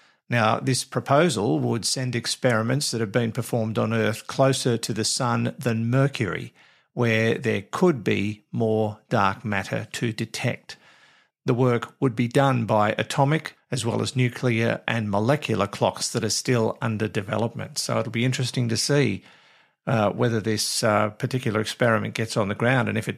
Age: 50-69